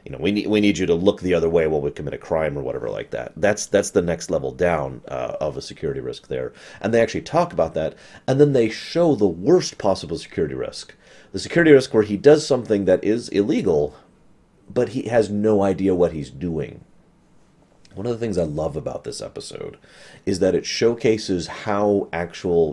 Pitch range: 90-120 Hz